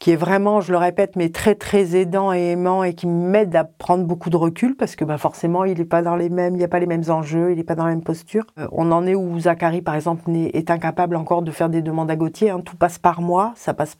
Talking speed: 290 wpm